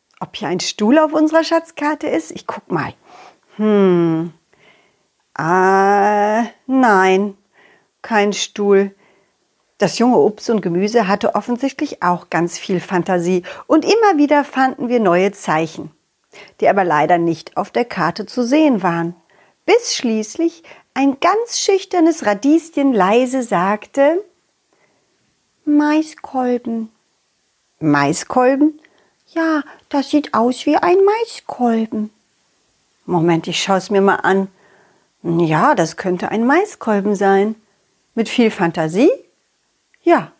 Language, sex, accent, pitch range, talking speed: German, female, German, 195-310 Hz, 115 wpm